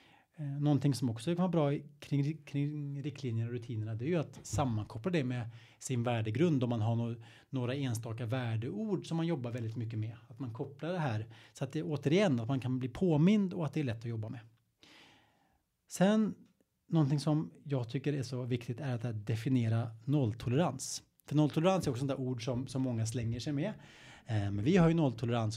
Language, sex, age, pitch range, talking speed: Swedish, male, 30-49, 115-145 Hz, 195 wpm